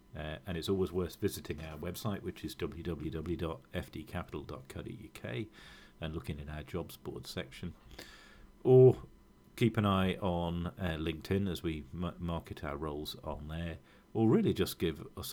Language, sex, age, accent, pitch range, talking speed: English, male, 40-59, British, 75-90 Hz, 150 wpm